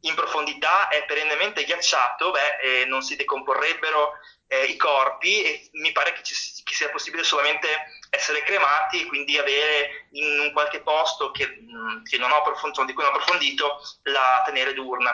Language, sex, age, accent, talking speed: Italian, male, 20-39, native, 170 wpm